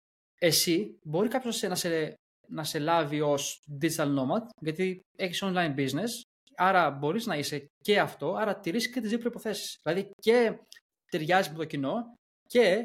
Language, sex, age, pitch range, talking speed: Greek, male, 20-39, 145-195 Hz, 160 wpm